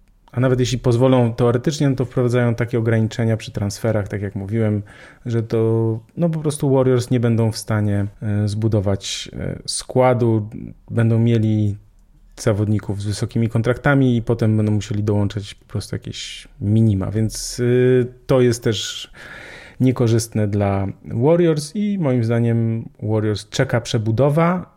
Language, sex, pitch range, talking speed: Polish, male, 105-125 Hz, 135 wpm